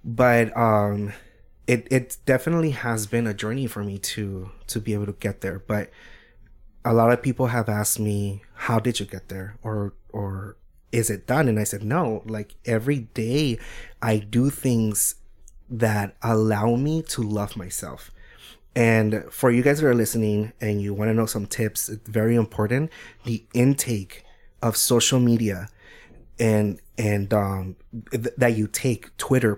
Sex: male